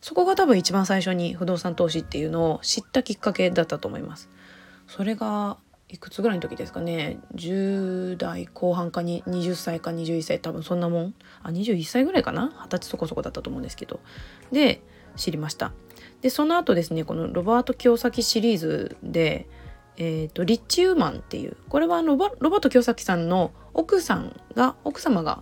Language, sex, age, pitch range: Japanese, female, 20-39, 165-245 Hz